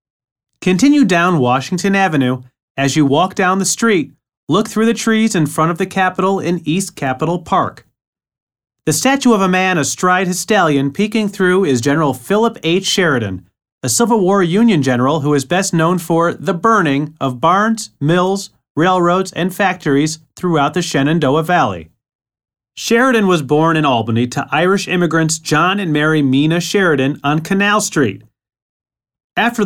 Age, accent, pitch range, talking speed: 30-49, American, 135-190 Hz, 155 wpm